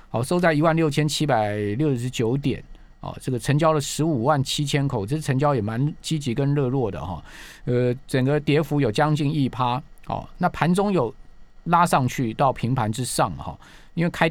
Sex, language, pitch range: male, Chinese, 120-155 Hz